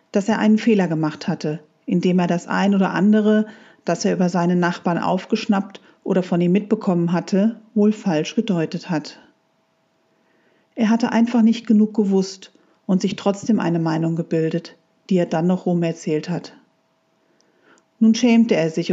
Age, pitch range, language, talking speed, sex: 40-59, 175-225 Hz, German, 160 wpm, female